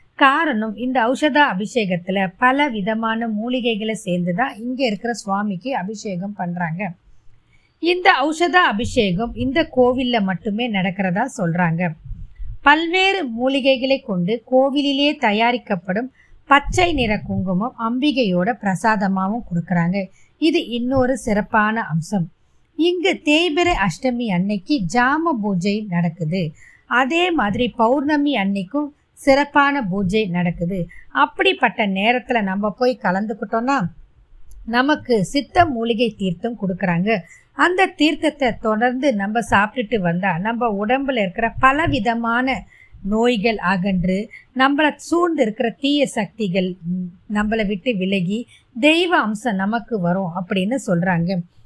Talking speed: 100 wpm